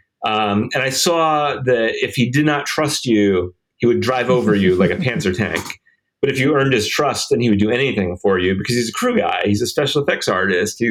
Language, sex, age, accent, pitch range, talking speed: English, male, 30-49, American, 100-140 Hz, 235 wpm